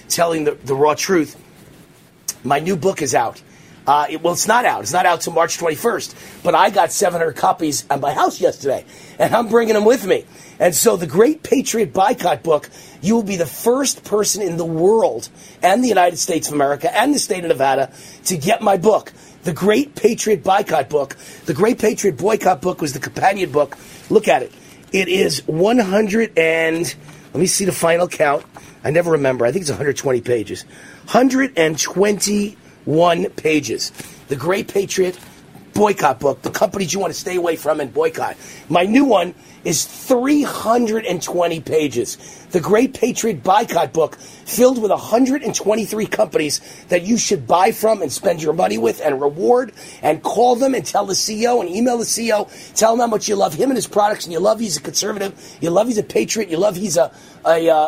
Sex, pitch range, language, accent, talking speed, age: male, 160-215 Hz, English, American, 190 wpm, 40-59